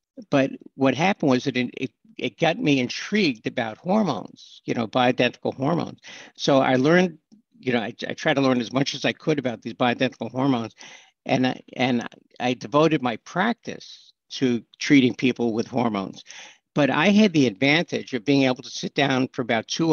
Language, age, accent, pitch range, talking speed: English, 60-79, American, 120-150 Hz, 185 wpm